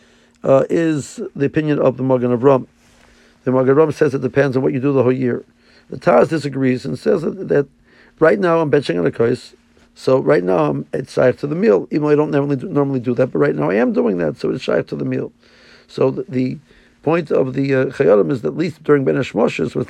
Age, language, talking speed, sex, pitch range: 50-69, English, 255 wpm, male, 125-145 Hz